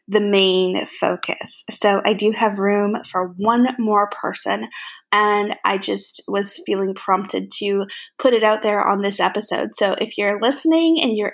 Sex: female